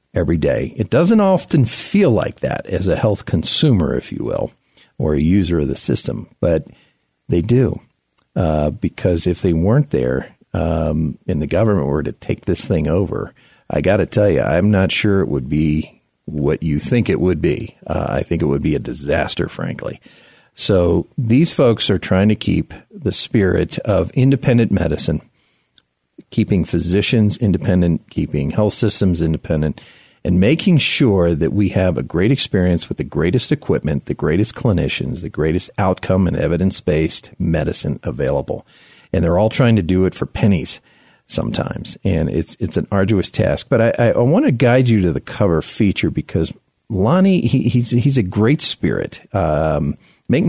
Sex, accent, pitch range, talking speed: male, American, 80-110 Hz, 175 wpm